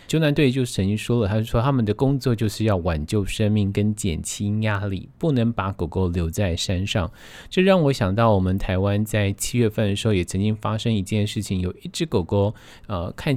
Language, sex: Chinese, male